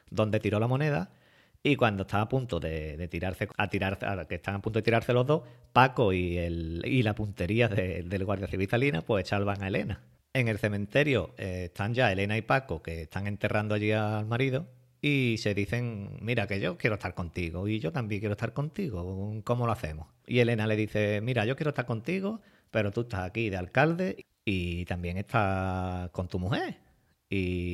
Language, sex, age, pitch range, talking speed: Spanish, male, 40-59, 90-120 Hz, 175 wpm